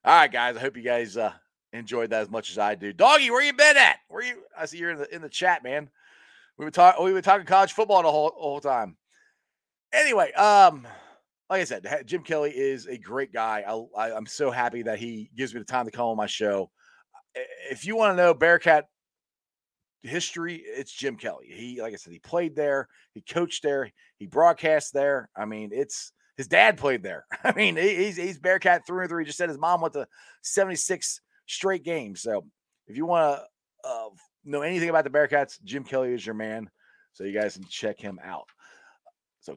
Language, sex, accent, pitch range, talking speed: English, male, American, 115-185 Hz, 210 wpm